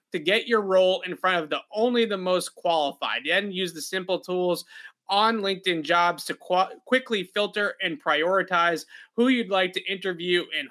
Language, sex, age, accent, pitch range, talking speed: English, male, 30-49, American, 165-195 Hz, 180 wpm